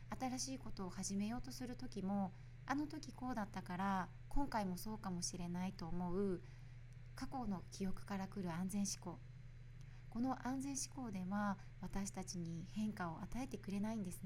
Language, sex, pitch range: Japanese, female, 125-205 Hz